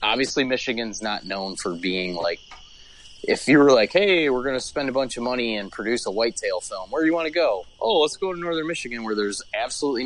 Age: 20-39